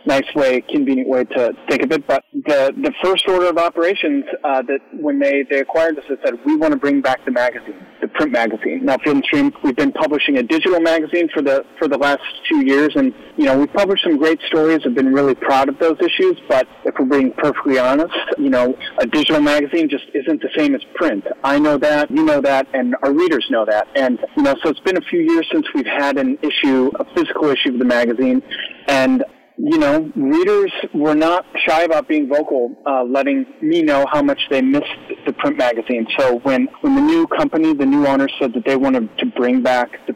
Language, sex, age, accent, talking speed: English, male, 40-59, American, 225 wpm